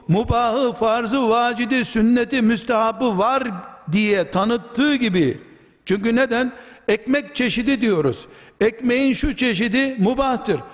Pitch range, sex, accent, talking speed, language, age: 215-260 Hz, male, native, 100 wpm, Turkish, 60-79